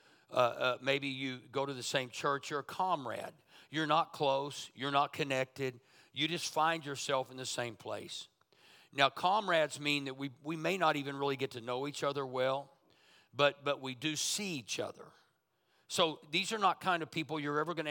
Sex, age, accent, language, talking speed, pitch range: male, 50-69, American, English, 200 wpm, 140-165 Hz